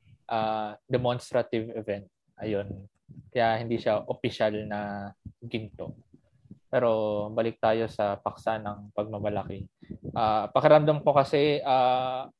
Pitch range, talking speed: 115-140 Hz, 105 wpm